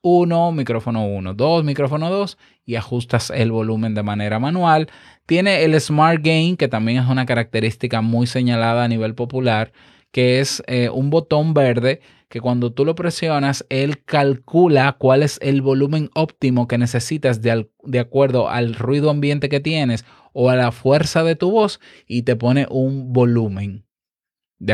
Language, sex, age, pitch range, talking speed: Spanish, male, 20-39, 115-145 Hz, 165 wpm